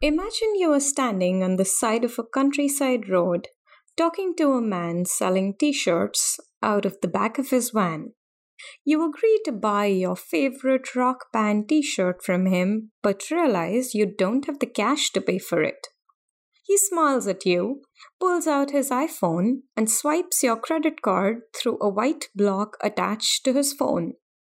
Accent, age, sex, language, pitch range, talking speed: Indian, 20-39, female, English, 210-295 Hz, 165 wpm